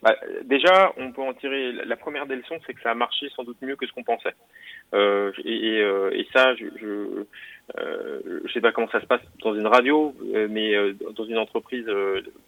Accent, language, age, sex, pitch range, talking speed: French, French, 30-49, male, 110-155 Hz, 230 wpm